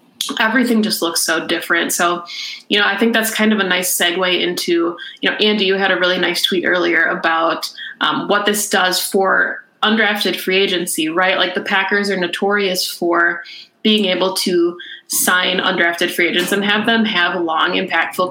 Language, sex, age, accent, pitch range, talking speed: English, female, 20-39, American, 175-210 Hz, 185 wpm